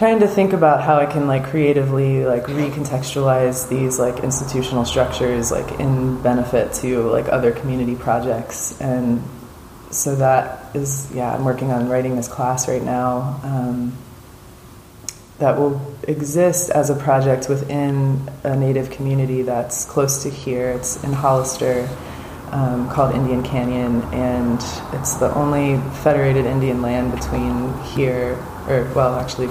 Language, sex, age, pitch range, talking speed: English, female, 20-39, 125-135 Hz, 140 wpm